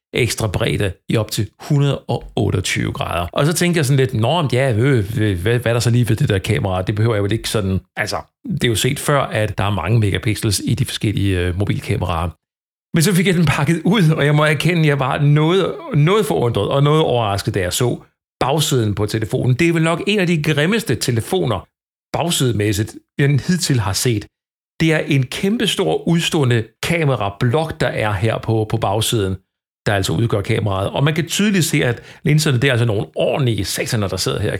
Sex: male